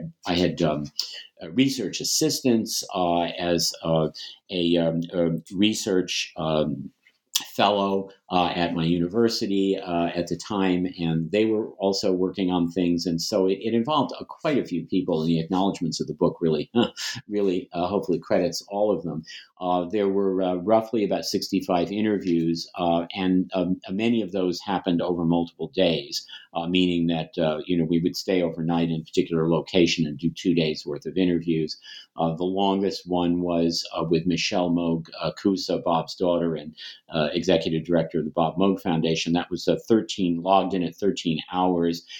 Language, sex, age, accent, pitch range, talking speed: English, male, 50-69, American, 85-95 Hz, 170 wpm